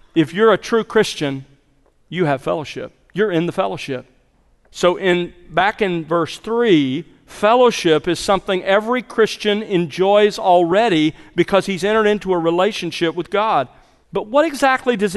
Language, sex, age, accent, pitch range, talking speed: English, male, 40-59, American, 145-200 Hz, 145 wpm